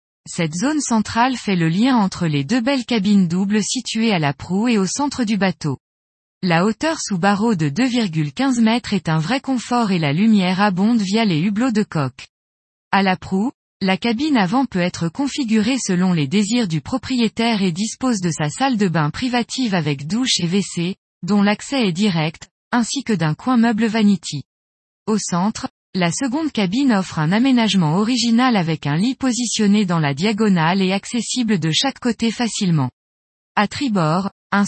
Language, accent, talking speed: French, French, 175 wpm